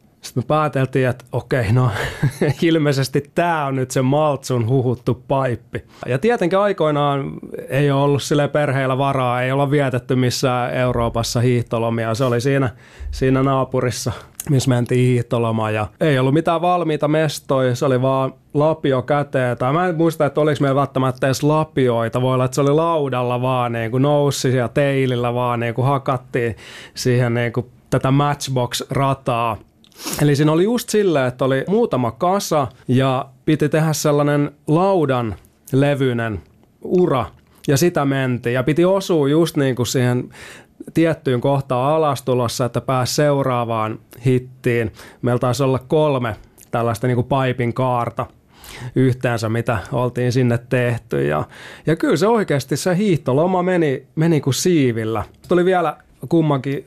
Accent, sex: native, male